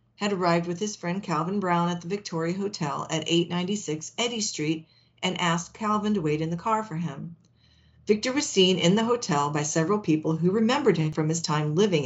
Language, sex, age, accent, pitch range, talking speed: English, female, 50-69, American, 155-200 Hz, 205 wpm